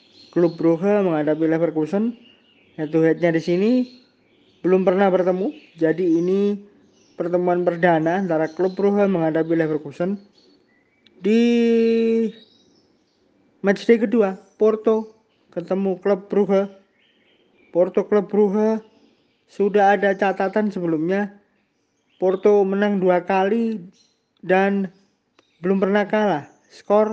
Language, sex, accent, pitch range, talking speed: Indonesian, male, native, 170-205 Hz, 95 wpm